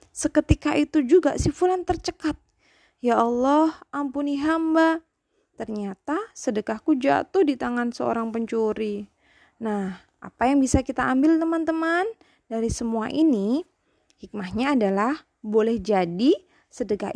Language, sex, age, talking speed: Indonesian, female, 20-39, 110 wpm